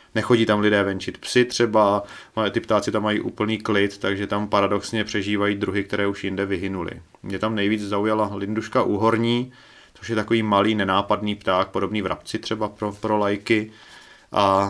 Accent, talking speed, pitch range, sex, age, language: native, 165 wpm, 95-105 Hz, male, 30-49, Czech